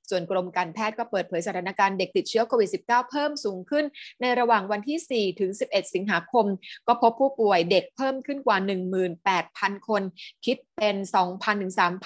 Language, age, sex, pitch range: Thai, 20-39, female, 190-245 Hz